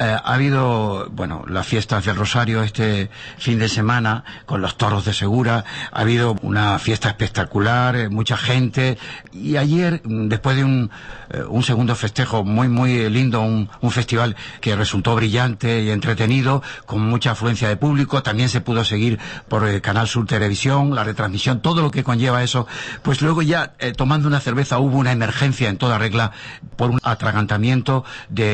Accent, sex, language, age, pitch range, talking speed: Spanish, male, Spanish, 50-69, 110-135 Hz, 175 wpm